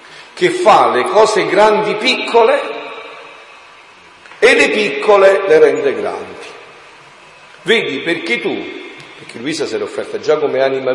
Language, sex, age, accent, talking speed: Italian, male, 50-69, native, 125 wpm